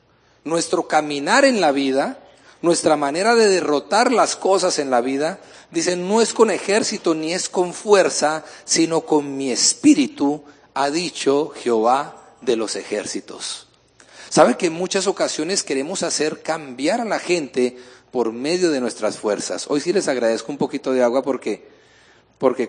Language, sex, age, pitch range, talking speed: English, male, 40-59, 145-200 Hz, 155 wpm